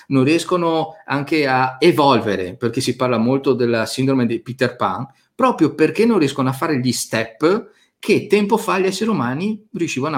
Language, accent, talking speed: Italian, native, 170 wpm